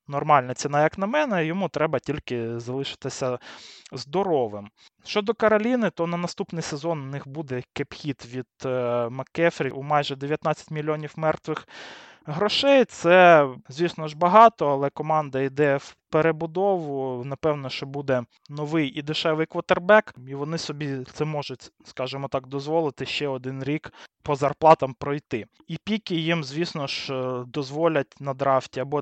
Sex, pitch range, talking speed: male, 130-165 Hz, 140 wpm